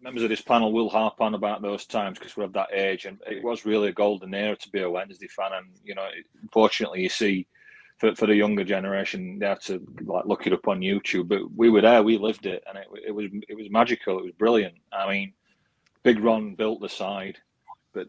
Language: English